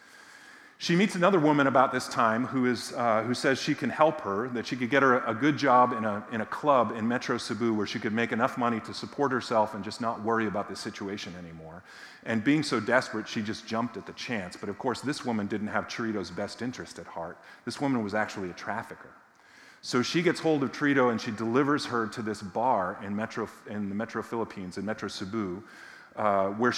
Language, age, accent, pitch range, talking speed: English, 40-59, American, 105-125 Hz, 225 wpm